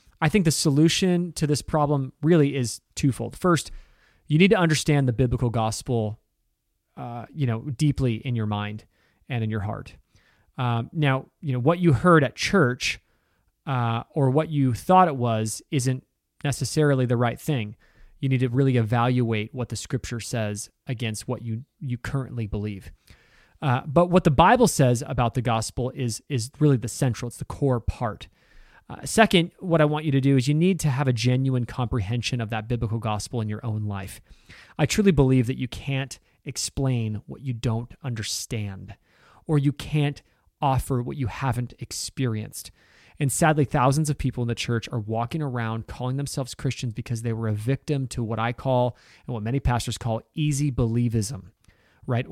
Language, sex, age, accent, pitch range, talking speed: English, male, 30-49, American, 115-140 Hz, 180 wpm